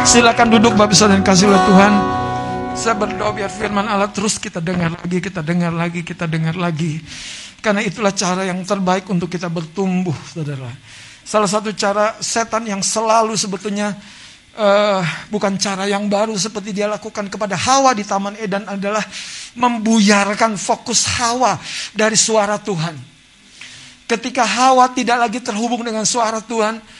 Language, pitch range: Indonesian, 190-240 Hz